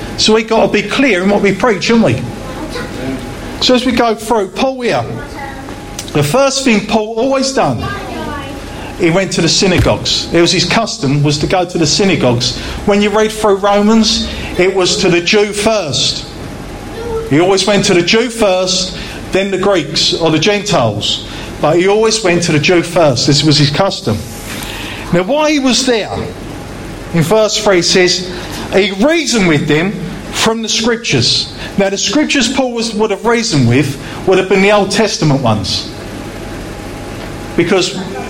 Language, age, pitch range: English, 40-59, 170-215 Hz